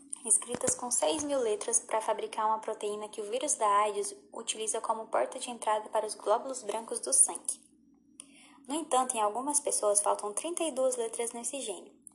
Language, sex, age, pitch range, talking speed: Portuguese, female, 10-29, 230-300 Hz, 170 wpm